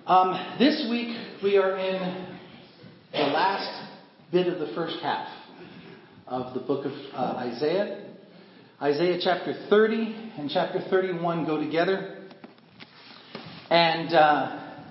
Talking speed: 115 wpm